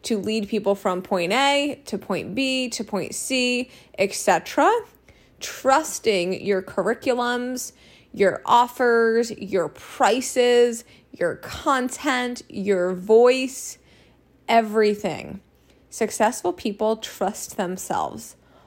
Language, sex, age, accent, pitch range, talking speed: English, female, 20-39, American, 190-235 Hz, 95 wpm